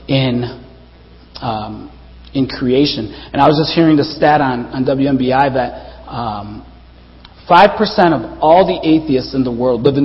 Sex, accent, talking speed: male, American, 160 wpm